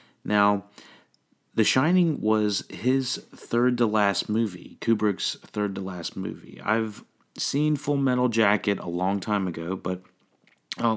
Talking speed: 115 wpm